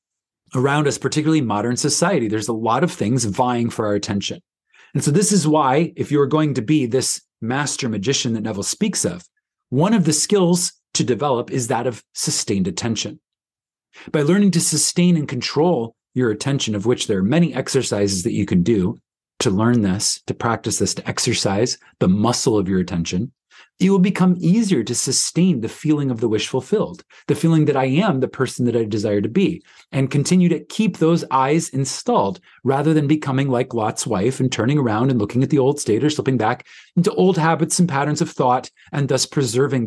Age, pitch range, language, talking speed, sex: 30-49, 120-165 Hz, English, 200 wpm, male